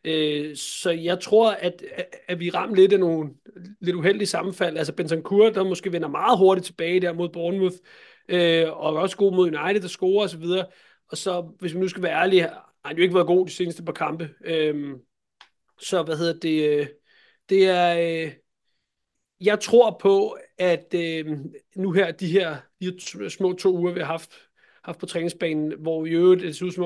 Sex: male